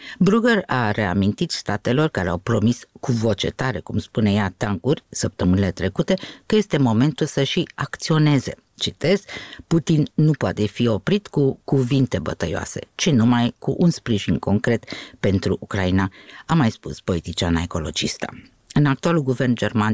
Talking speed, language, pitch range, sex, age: 145 wpm, Romanian, 100-135 Hz, female, 50-69